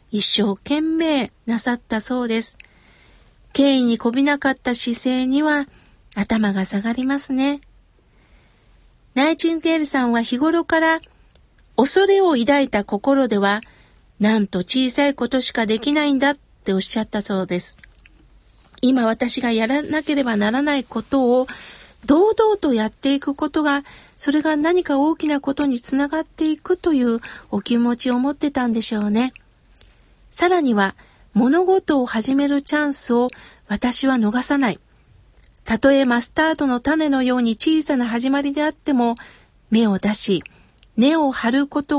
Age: 50-69